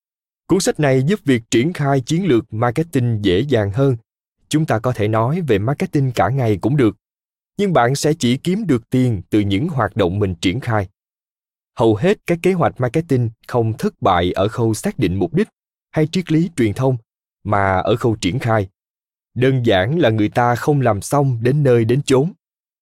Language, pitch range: Vietnamese, 110-145 Hz